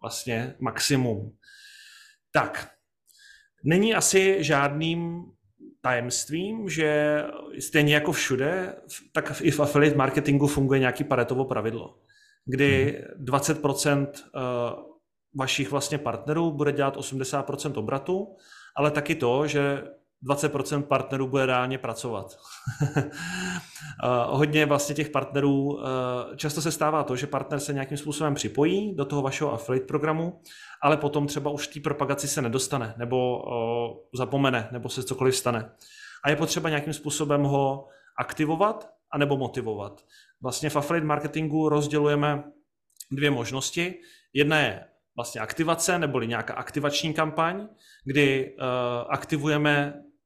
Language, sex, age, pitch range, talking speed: Czech, male, 30-49, 130-155 Hz, 115 wpm